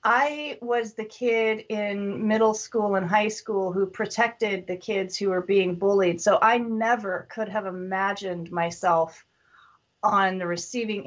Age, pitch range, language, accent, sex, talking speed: 30-49, 190-225 Hz, English, American, female, 150 wpm